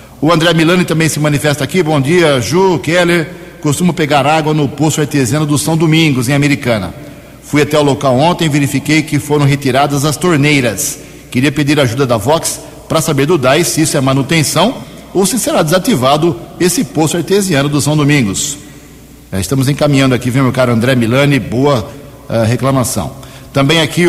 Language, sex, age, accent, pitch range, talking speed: Portuguese, male, 60-79, Brazilian, 130-165 Hz, 175 wpm